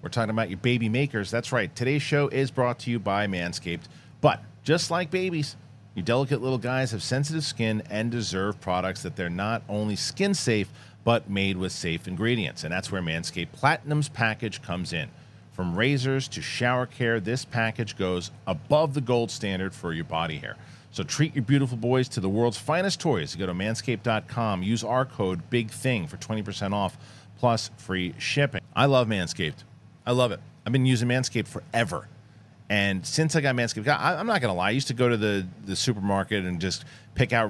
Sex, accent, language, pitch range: male, American, English, 105-135 Hz